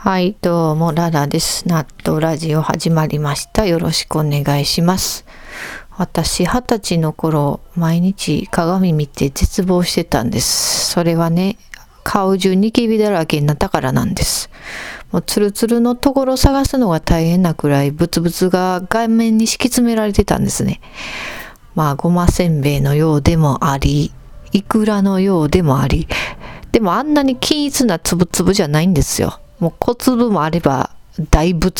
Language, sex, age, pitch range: Japanese, female, 40-59, 155-220 Hz